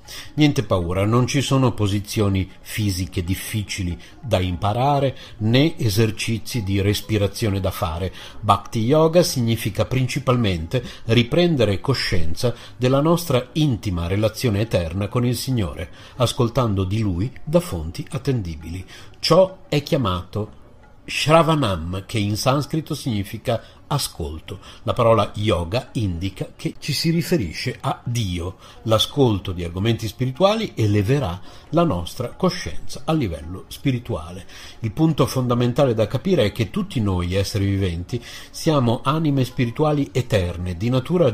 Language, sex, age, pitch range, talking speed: Italian, male, 50-69, 95-135 Hz, 120 wpm